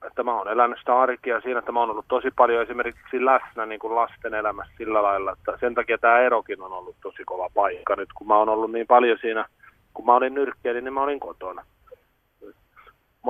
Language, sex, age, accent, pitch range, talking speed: Finnish, male, 30-49, native, 115-140 Hz, 210 wpm